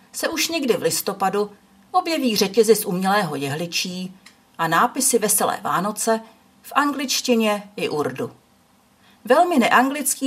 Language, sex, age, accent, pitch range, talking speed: Czech, female, 40-59, native, 175-245 Hz, 115 wpm